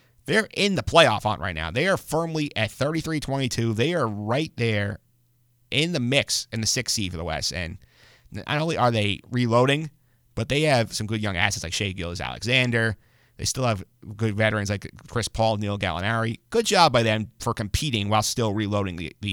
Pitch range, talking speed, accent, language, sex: 105-125 Hz, 195 wpm, American, English, male